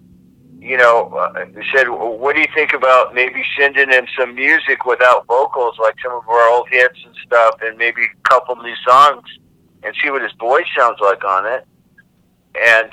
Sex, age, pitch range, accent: male, 50-69, 120-145 Hz, American